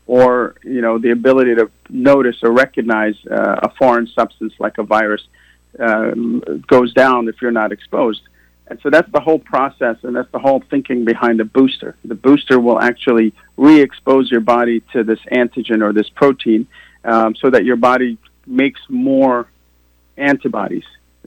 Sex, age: male, 50-69